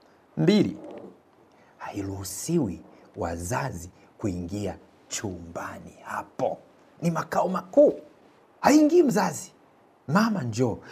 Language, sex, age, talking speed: Swahili, male, 60-79, 70 wpm